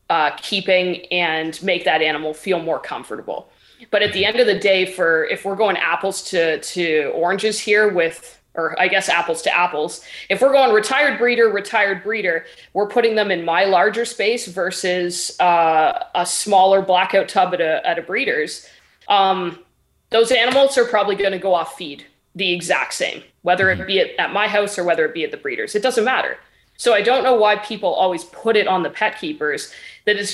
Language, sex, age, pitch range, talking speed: English, female, 20-39, 180-245 Hz, 200 wpm